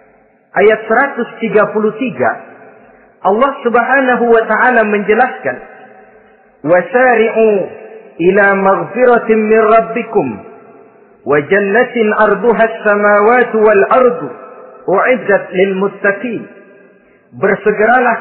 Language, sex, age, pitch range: Indonesian, male, 50-69, 205-240 Hz